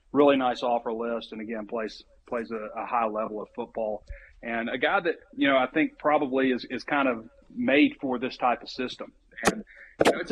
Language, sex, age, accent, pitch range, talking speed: English, male, 30-49, American, 110-130 Hz, 205 wpm